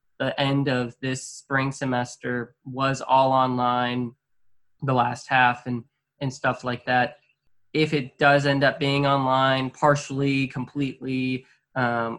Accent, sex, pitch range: American, male, 120-140 Hz